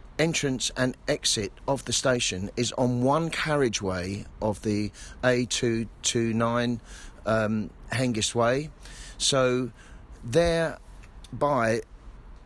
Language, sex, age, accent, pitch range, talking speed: English, male, 40-59, British, 100-130 Hz, 85 wpm